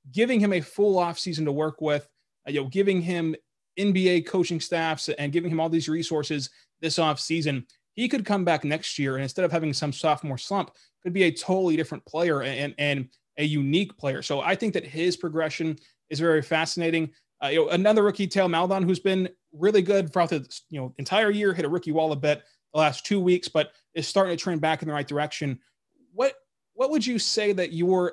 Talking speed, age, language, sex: 220 wpm, 20-39, English, male